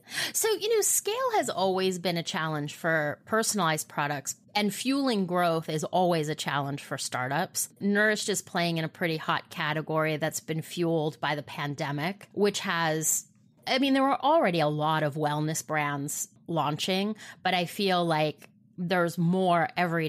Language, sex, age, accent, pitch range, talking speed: English, female, 30-49, American, 155-200 Hz, 165 wpm